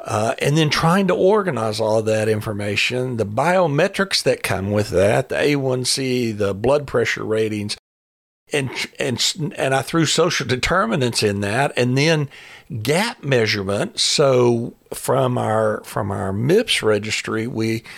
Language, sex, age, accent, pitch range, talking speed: English, male, 60-79, American, 120-170 Hz, 145 wpm